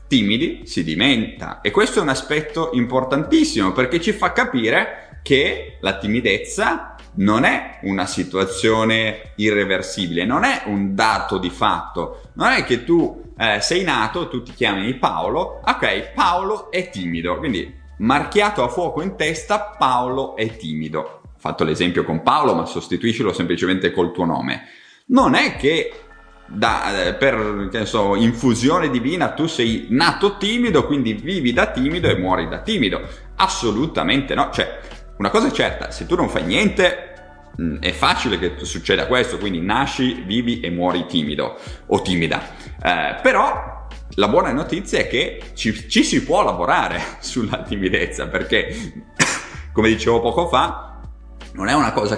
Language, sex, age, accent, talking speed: Italian, male, 30-49, native, 155 wpm